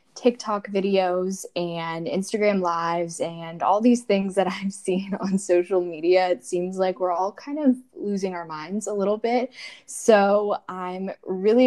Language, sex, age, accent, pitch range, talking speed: English, female, 10-29, American, 170-200 Hz, 160 wpm